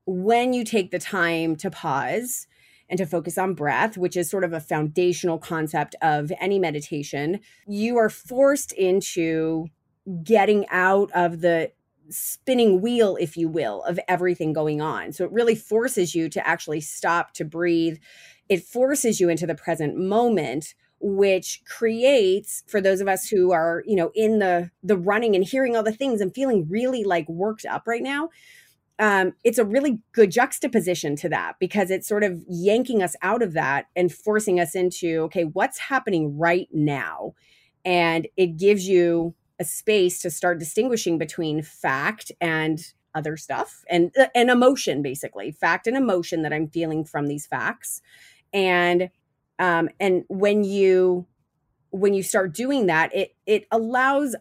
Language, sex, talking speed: English, female, 165 wpm